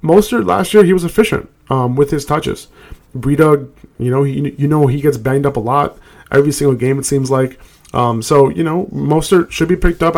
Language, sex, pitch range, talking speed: English, male, 125-150 Hz, 205 wpm